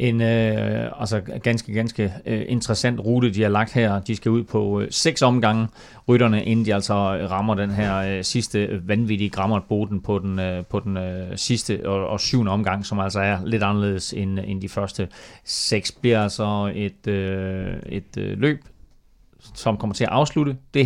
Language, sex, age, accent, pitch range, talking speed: Danish, male, 30-49, native, 100-125 Hz, 155 wpm